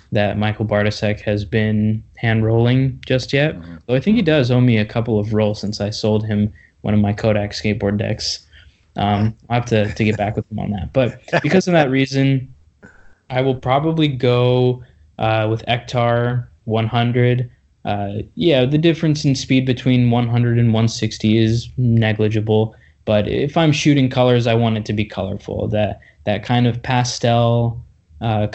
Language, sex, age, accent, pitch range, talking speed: English, male, 20-39, American, 105-125 Hz, 175 wpm